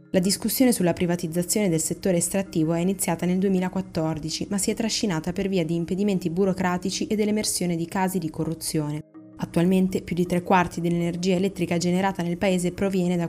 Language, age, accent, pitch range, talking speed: Italian, 20-39, native, 160-185 Hz, 170 wpm